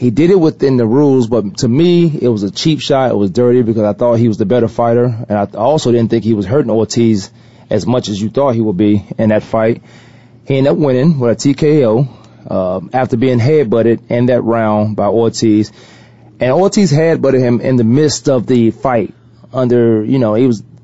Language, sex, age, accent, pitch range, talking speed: English, male, 30-49, American, 110-130 Hz, 220 wpm